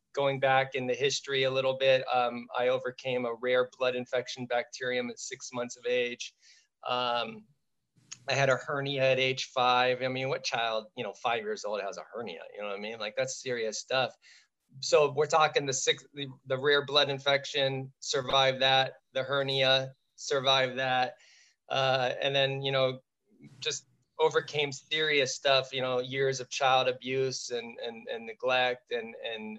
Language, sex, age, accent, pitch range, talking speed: English, male, 20-39, American, 125-140 Hz, 175 wpm